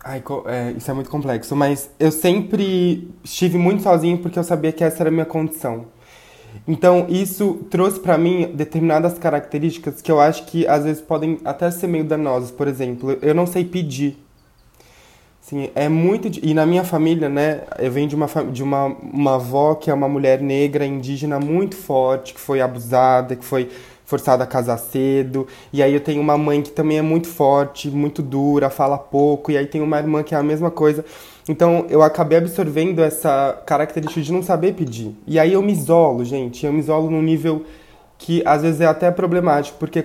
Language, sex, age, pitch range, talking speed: Portuguese, male, 20-39, 135-165 Hz, 200 wpm